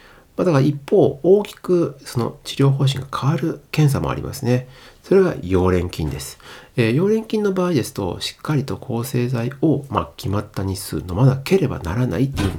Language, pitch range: Japanese, 105-140 Hz